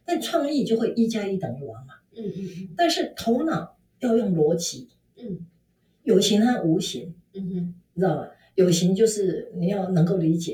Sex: female